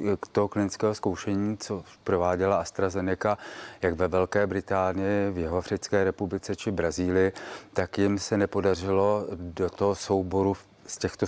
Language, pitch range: Czech, 95-105 Hz